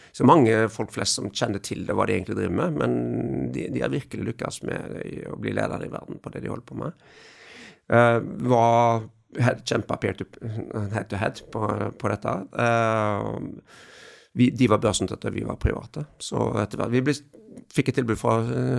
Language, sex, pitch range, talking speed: English, male, 100-125 Hz, 205 wpm